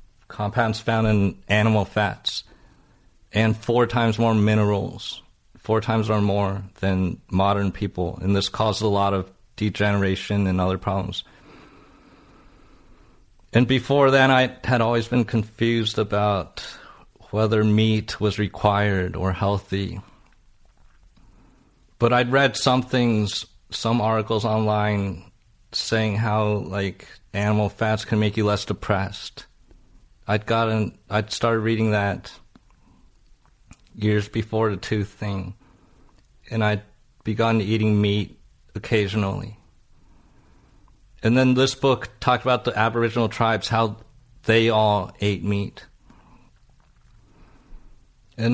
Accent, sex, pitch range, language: American, male, 100-115 Hz, English